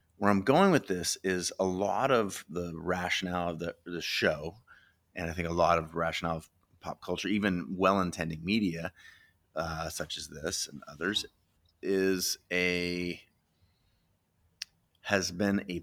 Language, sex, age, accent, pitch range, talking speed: English, male, 30-49, American, 80-95 Hz, 150 wpm